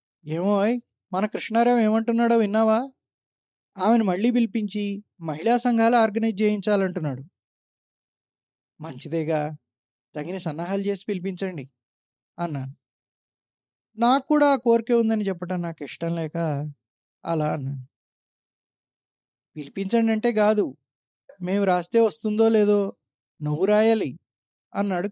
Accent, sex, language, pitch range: native, male, Telugu, 135-200 Hz